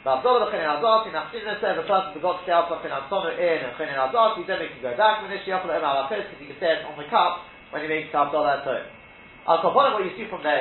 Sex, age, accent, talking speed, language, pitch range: male, 30-49, British, 125 wpm, English, 165-220 Hz